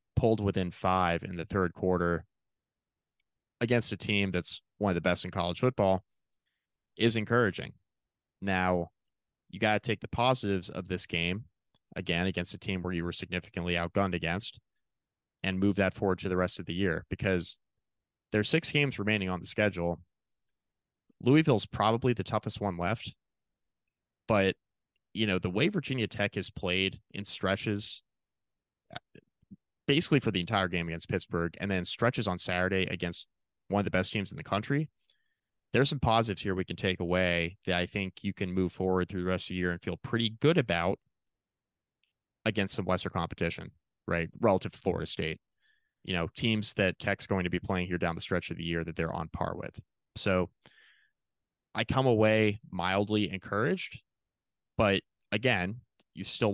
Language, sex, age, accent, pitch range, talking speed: English, male, 30-49, American, 90-105 Hz, 175 wpm